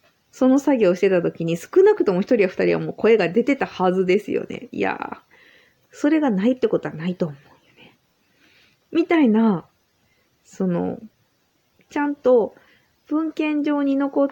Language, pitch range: Japanese, 185-285 Hz